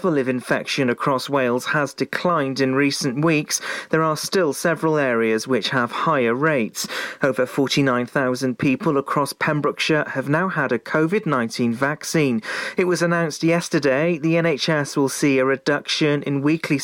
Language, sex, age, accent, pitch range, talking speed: English, male, 40-59, British, 130-160 Hz, 145 wpm